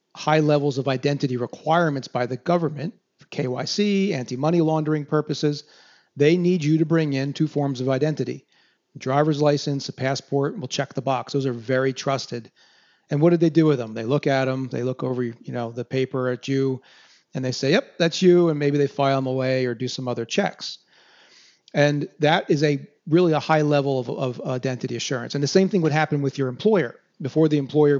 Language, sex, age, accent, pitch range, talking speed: English, male, 40-59, American, 130-155 Hz, 210 wpm